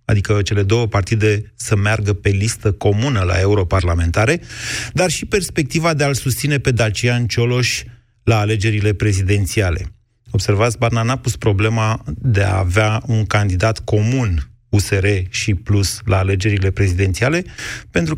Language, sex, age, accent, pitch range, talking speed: Romanian, male, 30-49, native, 100-120 Hz, 135 wpm